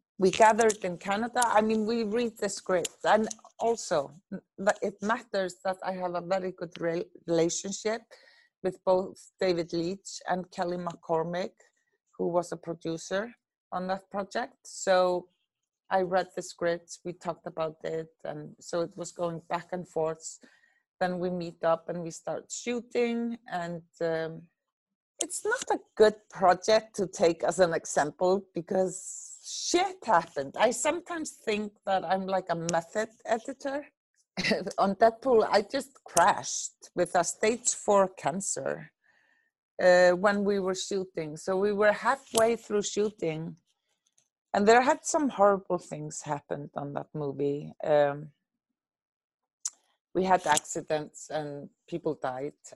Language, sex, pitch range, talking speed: English, female, 170-220 Hz, 140 wpm